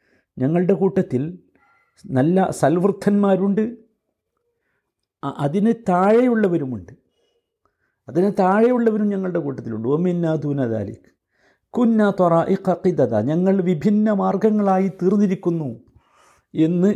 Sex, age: male, 50-69